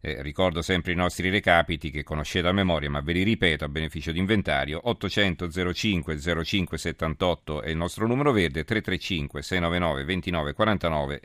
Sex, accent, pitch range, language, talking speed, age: male, native, 85-105 Hz, Italian, 160 wpm, 40-59